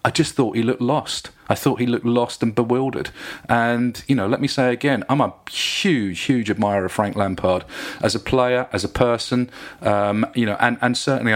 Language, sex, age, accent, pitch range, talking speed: English, male, 30-49, British, 100-120 Hz, 210 wpm